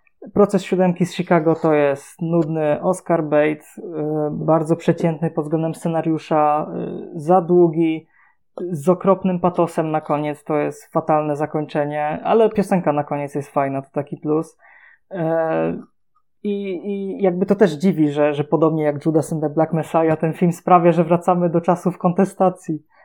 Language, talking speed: Polish, 150 wpm